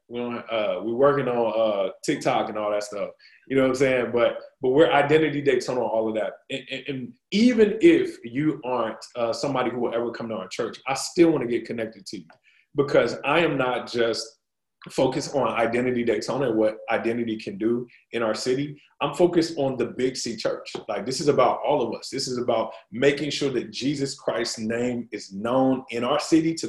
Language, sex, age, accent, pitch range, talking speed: English, male, 20-39, American, 115-150 Hz, 215 wpm